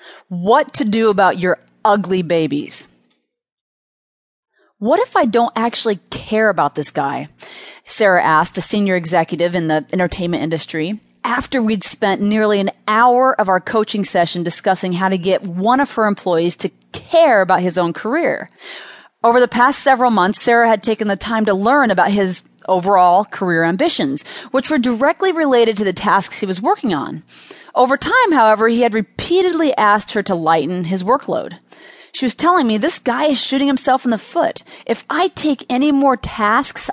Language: English